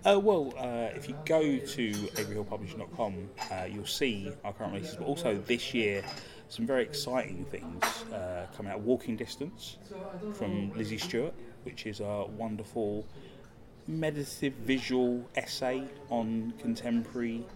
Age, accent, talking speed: 20-39, British, 130 wpm